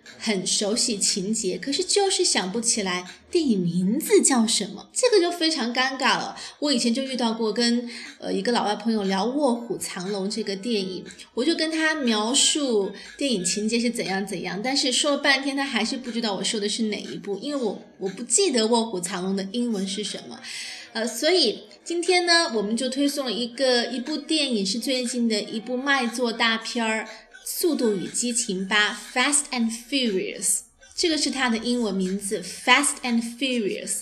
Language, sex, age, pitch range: Chinese, female, 20-39, 210-280 Hz